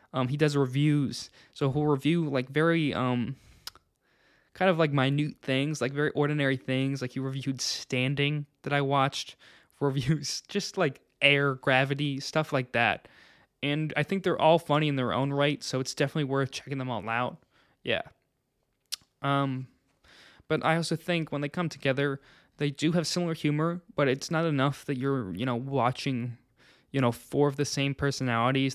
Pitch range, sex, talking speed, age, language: 130-150 Hz, male, 175 wpm, 20-39, English